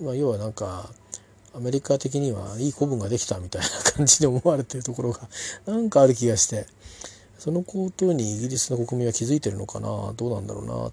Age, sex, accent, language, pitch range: 40-59, male, native, Japanese, 110-140 Hz